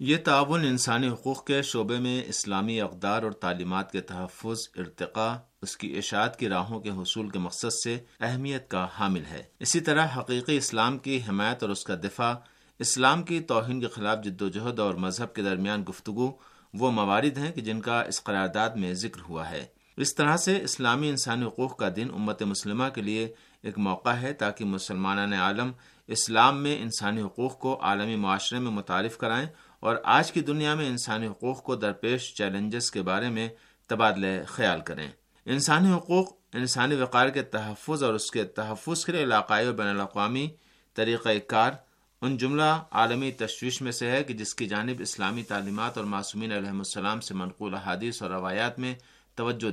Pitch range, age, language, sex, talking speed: 100-130 Hz, 50-69, Urdu, male, 175 wpm